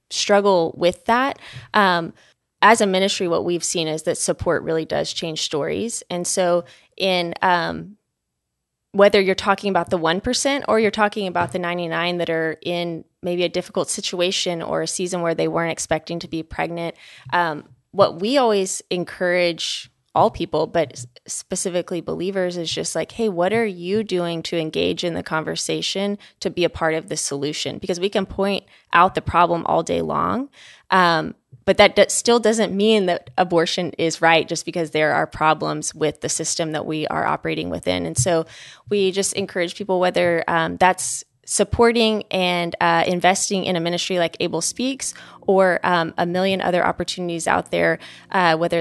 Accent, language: American, English